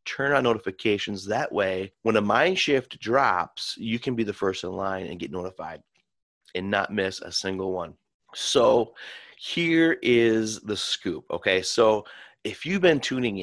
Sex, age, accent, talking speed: male, 30-49, American, 165 wpm